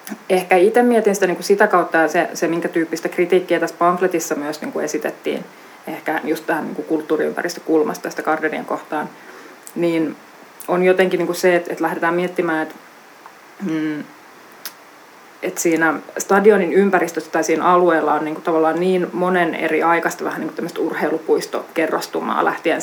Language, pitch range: Finnish, 160-180 Hz